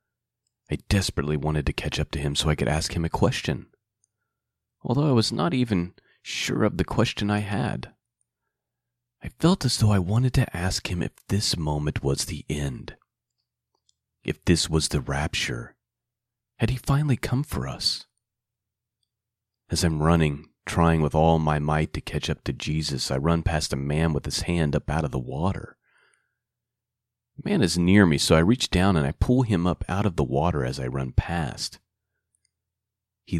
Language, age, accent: English, 30-49, American